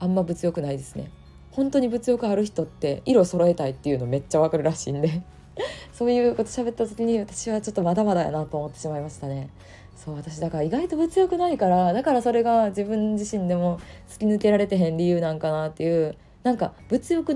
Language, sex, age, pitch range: Japanese, female, 20-39, 145-210 Hz